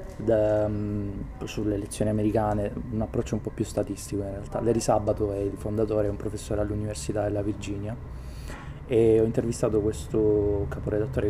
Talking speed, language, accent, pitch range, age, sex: 145 wpm, Italian, native, 100-110 Hz, 20-39, male